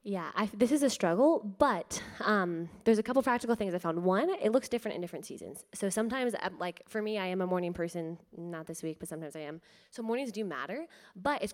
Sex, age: female, 10-29